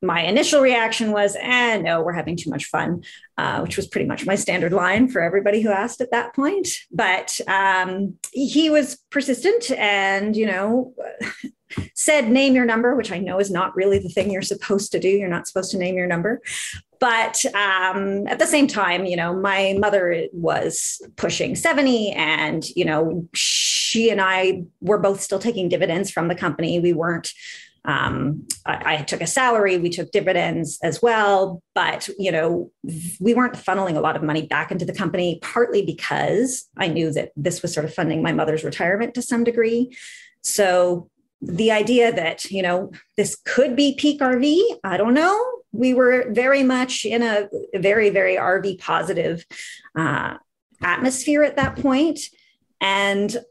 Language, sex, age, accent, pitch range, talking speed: English, female, 30-49, American, 175-245 Hz, 180 wpm